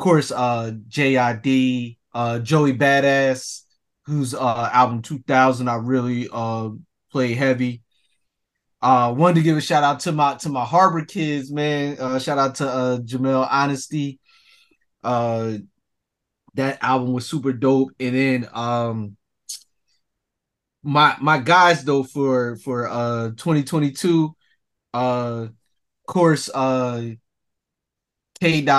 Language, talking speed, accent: English, 110 wpm, American